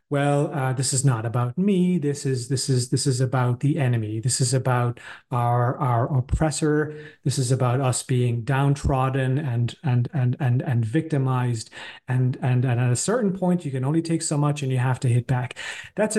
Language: English